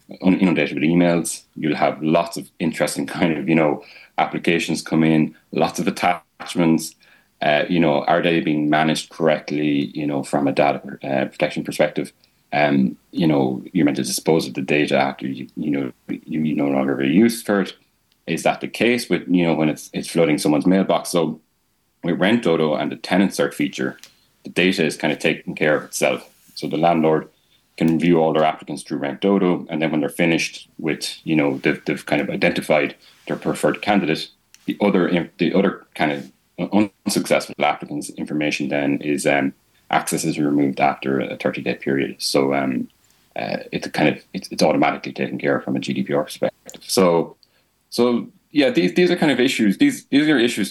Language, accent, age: English, Irish, 30-49